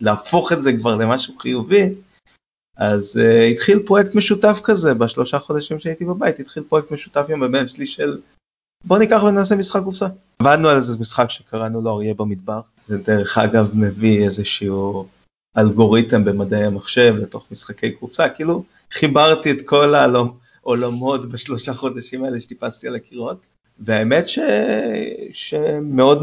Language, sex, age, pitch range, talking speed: Hebrew, male, 30-49, 105-135 Hz, 140 wpm